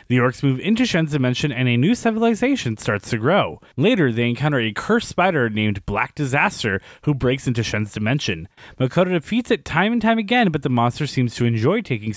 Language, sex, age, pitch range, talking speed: English, male, 30-49, 120-185 Hz, 200 wpm